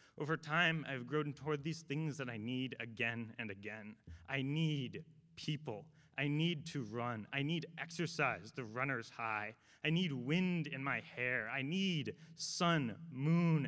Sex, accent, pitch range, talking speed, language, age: male, American, 125-155 Hz, 160 wpm, English, 30-49